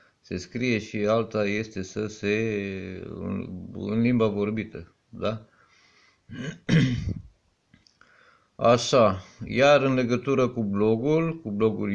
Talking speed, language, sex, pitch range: 100 wpm, Romanian, male, 105-125 Hz